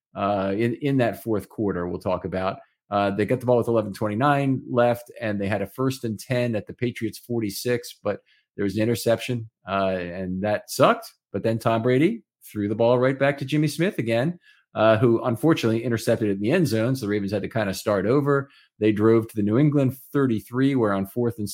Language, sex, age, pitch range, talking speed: English, male, 40-59, 100-130 Hz, 215 wpm